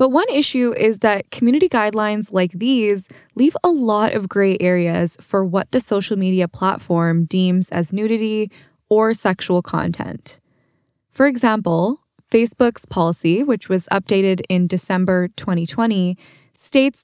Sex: female